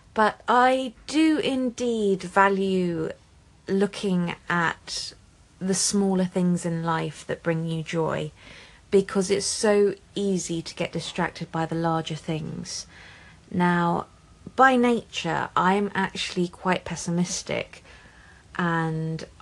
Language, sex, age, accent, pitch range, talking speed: English, female, 30-49, British, 160-190 Hz, 110 wpm